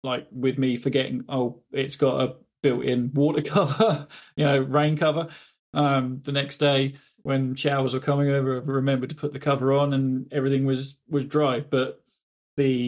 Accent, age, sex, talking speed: British, 20-39, male, 175 wpm